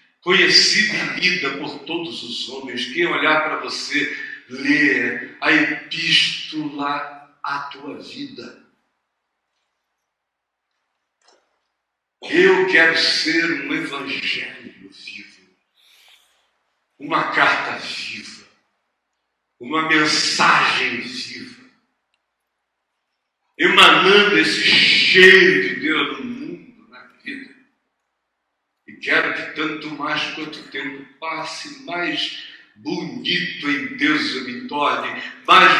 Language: Portuguese